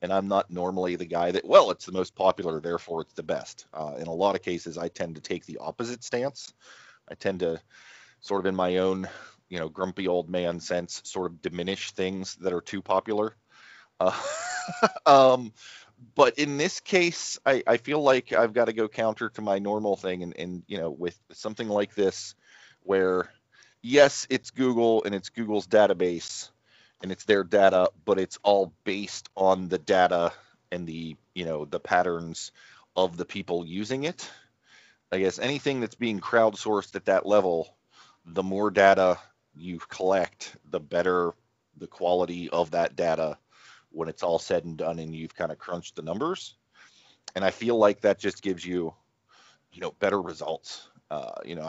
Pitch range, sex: 85-105 Hz, male